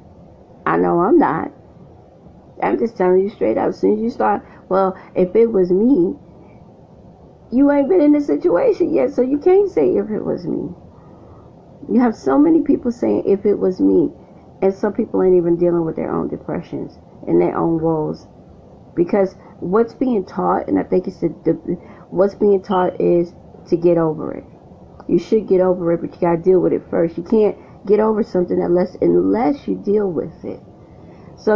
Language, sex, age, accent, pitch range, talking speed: English, female, 30-49, American, 165-205 Hz, 190 wpm